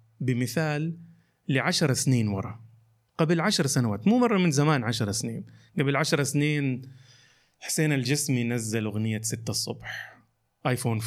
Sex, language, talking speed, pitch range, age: male, Arabic, 125 wpm, 115-145 Hz, 30-49